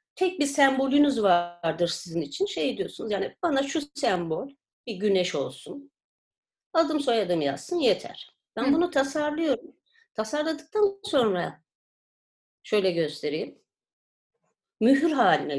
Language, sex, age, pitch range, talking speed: Turkish, female, 40-59, 200-305 Hz, 110 wpm